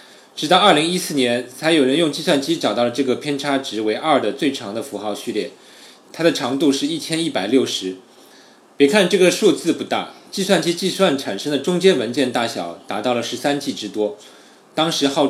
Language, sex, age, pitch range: Chinese, male, 20-39, 125-160 Hz